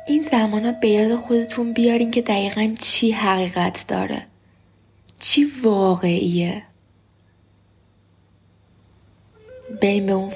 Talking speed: 95 wpm